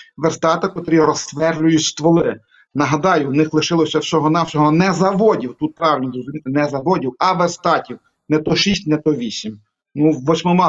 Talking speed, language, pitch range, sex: 145 wpm, Ukrainian, 145-175 Hz, male